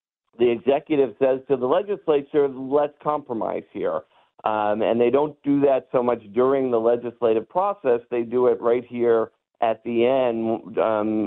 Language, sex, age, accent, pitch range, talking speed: English, male, 50-69, American, 115-135 Hz, 160 wpm